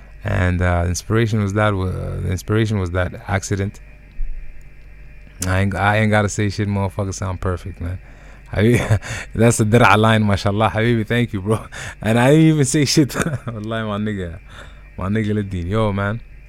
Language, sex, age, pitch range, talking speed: English, male, 20-39, 90-110 Hz, 155 wpm